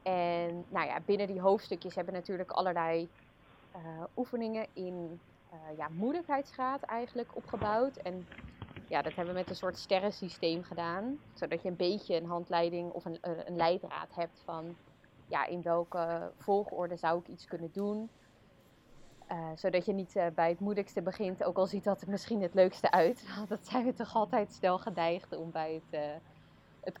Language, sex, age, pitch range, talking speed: Dutch, female, 20-39, 170-200 Hz, 175 wpm